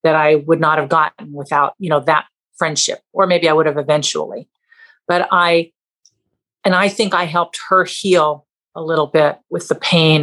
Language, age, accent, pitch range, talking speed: English, 50-69, American, 150-190 Hz, 190 wpm